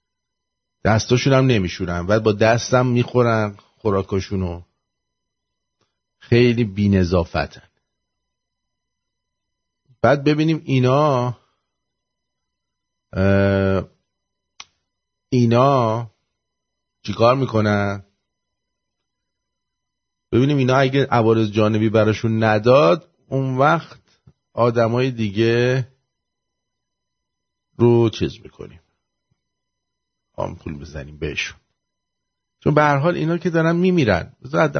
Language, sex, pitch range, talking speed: English, male, 100-130 Hz, 70 wpm